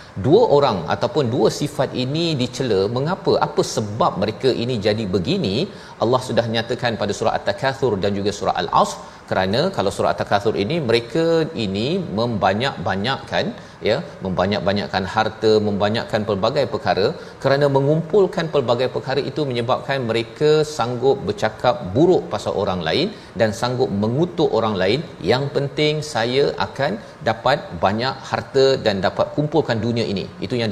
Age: 40-59